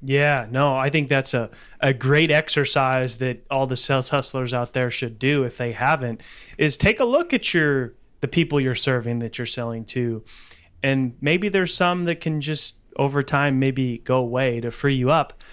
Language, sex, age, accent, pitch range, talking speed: English, male, 30-49, American, 130-160 Hz, 195 wpm